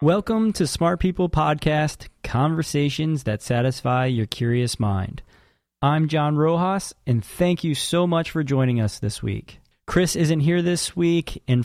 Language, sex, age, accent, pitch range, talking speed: English, male, 30-49, American, 120-160 Hz, 155 wpm